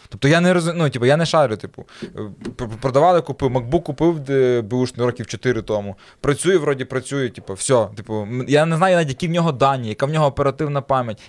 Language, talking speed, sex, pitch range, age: Ukrainian, 195 wpm, male, 120-155 Hz, 20-39